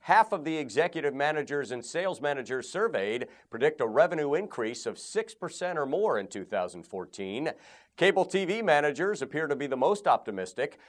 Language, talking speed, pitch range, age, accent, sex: English, 155 wpm, 130-185 Hz, 50-69, American, male